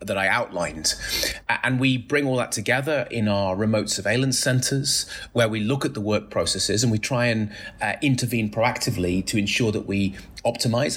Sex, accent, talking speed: male, British, 180 wpm